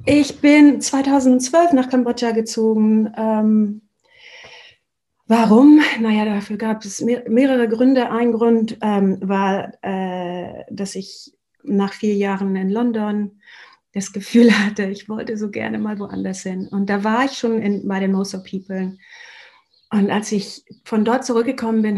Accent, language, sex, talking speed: German, German, female, 145 wpm